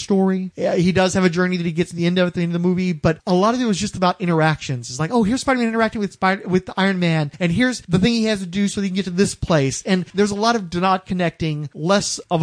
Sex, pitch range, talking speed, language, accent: male, 170-200 Hz, 310 wpm, English, American